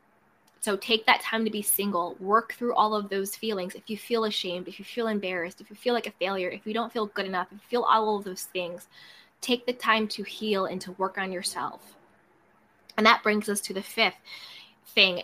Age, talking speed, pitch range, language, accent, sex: 20-39, 230 wpm, 195-240 Hz, English, American, female